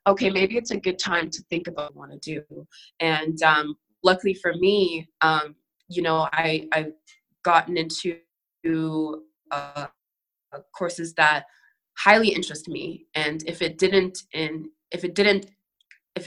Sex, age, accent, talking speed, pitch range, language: female, 20-39, American, 150 wpm, 155-190 Hz, English